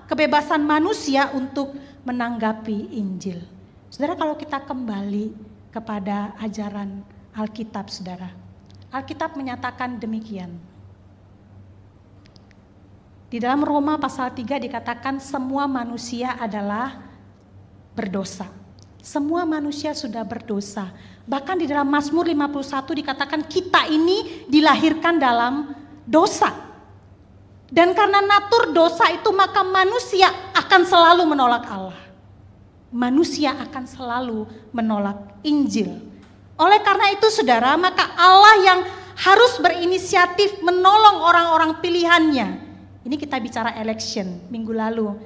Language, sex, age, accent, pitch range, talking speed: English, female, 40-59, Indonesian, 210-335 Hz, 100 wpm